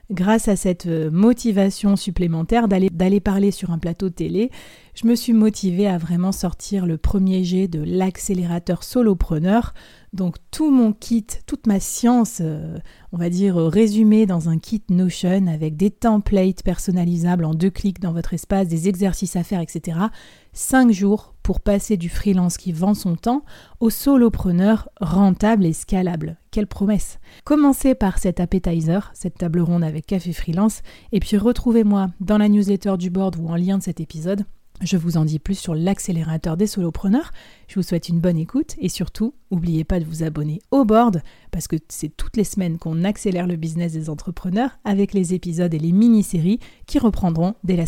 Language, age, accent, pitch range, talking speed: French, 30-49, French, 170-210 Hz, 175 wpm